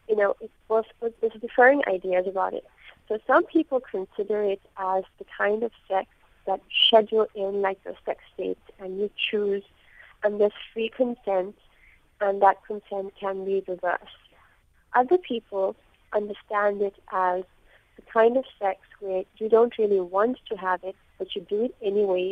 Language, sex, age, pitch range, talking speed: English, female, 30-49, 195-235 Hz, 160 wpm